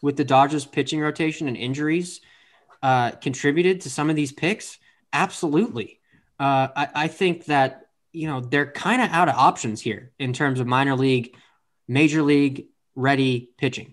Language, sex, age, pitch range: English, male, 20-39, 125-155 Hz